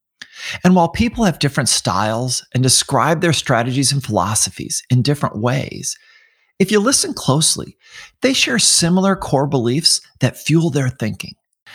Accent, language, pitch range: American, English, 120-185 Hz